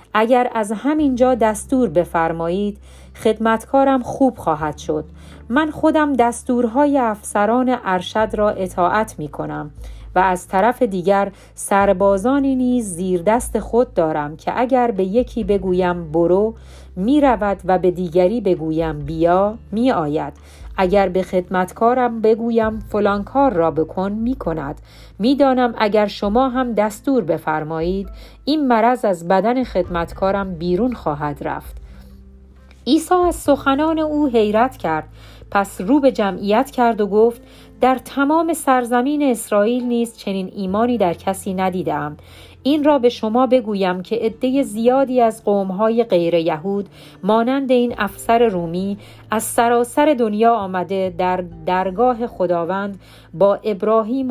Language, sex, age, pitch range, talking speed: Persian, female, 40-59, 180-245 Hz, 125 wpm